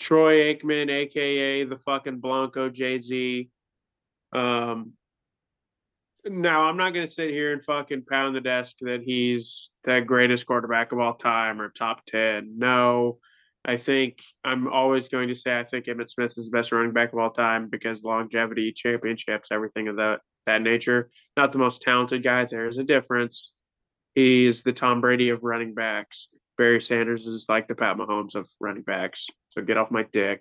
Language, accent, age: English, American, 20-39